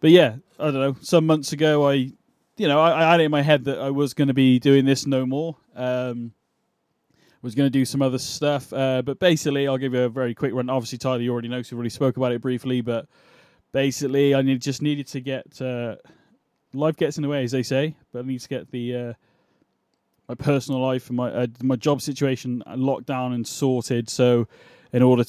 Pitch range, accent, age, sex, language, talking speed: 125-145 Hz, British, 20-39, male, English, 235 wpm